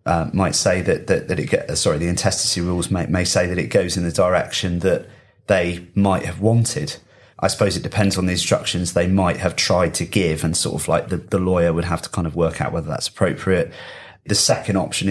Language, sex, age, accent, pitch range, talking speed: English, male, 30-49, British, 90-100 Hz, 235 wpm